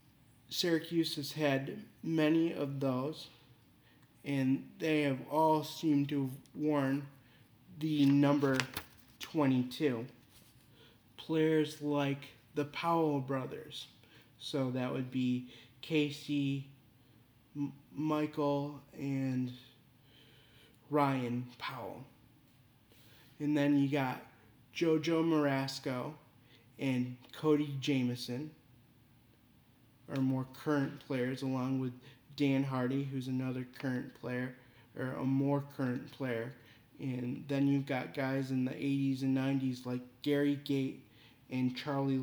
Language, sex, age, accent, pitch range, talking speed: English, male, 20-39, American, 125-145 Hz, 100 wpm